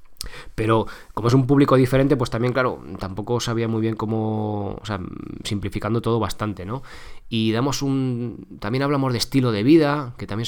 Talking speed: 180 wpm